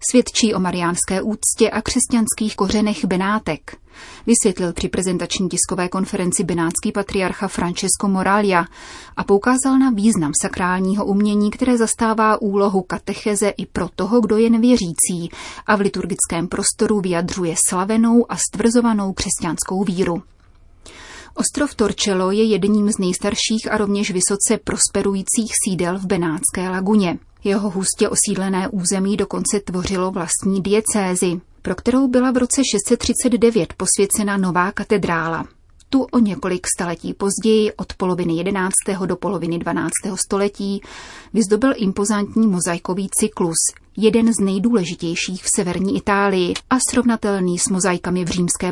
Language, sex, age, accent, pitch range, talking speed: Czech, female, 30-49, native, 185-215 Hz, 125 wpm